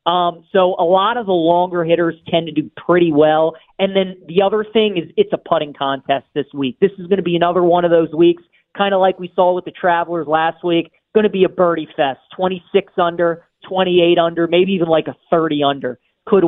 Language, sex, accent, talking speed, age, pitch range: English, male, American, 225 wpm, 40-59, 160-195 Hz